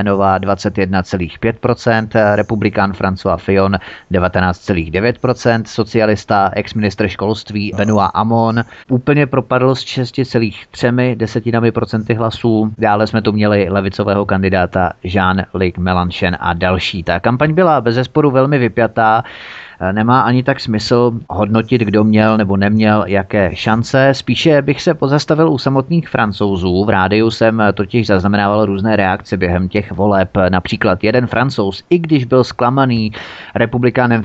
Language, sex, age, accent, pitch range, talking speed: Czech, male, 30-49, native, 100-120 Hz, 120 wpm